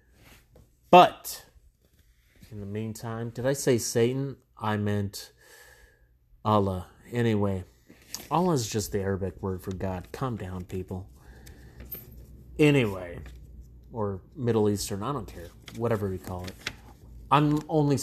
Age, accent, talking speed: 30-49, American, 120 wpm